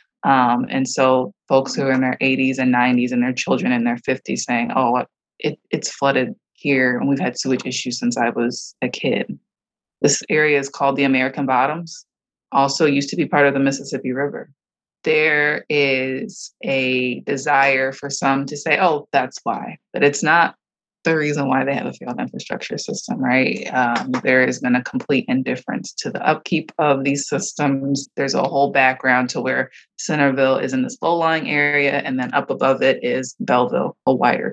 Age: 20-39